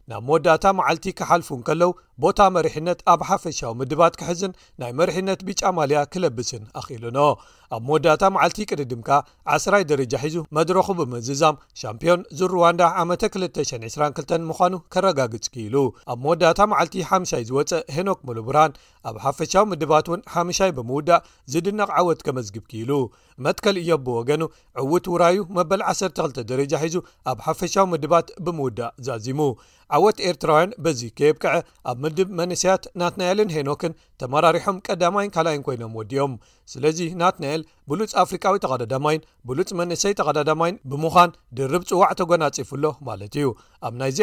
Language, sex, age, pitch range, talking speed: Amharic, male, 40-59, 135-180 Hz, 115 wpm